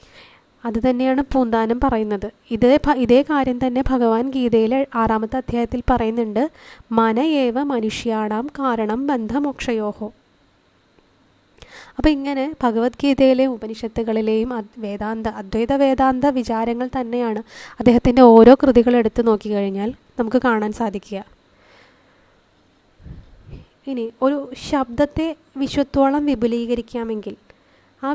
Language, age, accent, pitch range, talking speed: Malayalam, 20-39, native, 230-270 Hz, 85 wpm